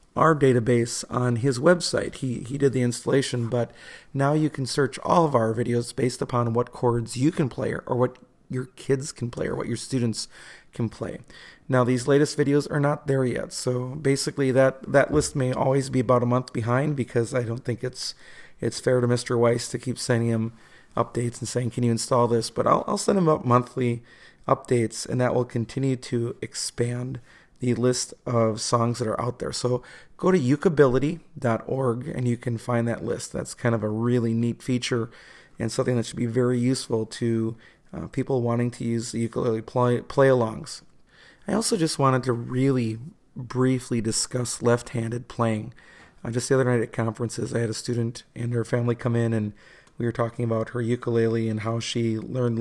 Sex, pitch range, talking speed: male, 115-130 Hz, 195 wpm